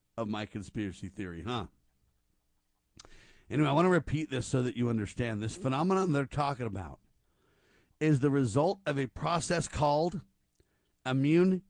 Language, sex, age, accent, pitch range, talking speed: English, male, 50-69, American, 110-160 Hz, 145 wpm